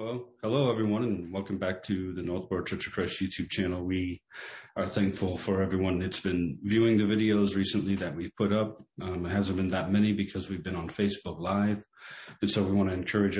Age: 30-49